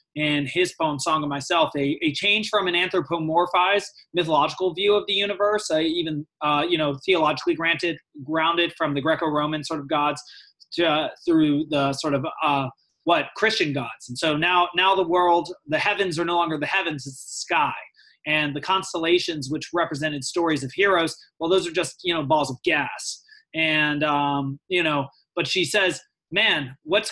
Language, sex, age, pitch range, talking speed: English, male, 20-39, 150-180 Hz, 185 wpm